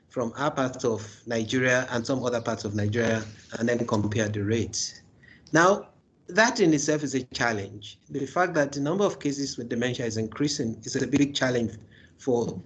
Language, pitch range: English, 110-140 Hz